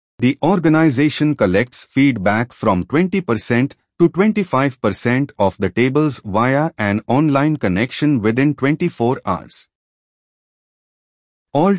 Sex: male